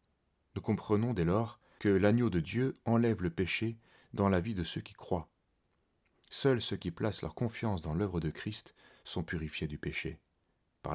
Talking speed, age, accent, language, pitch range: 180 wpm, 30-49, French, French, 80-105 Hz